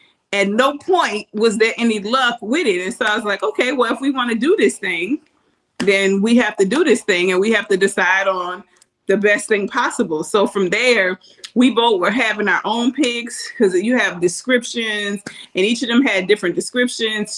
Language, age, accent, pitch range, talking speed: English, 30-49, American, 210-290 Hz, 210 wpm